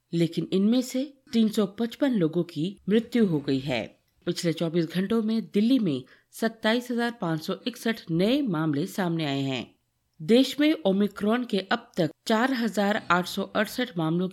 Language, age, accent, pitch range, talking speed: Hindi, 50-69, native, 155-220 Hz, 125 wpm